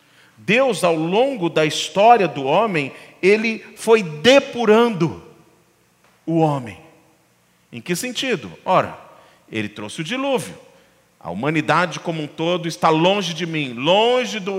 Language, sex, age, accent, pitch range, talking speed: Portuguese, male, 40-59, Brazilian, 160-240 Hz, 125 wpm